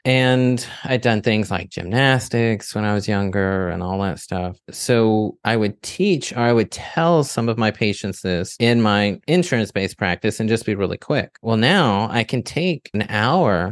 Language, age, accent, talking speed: English, 30-49, American, 190 wpm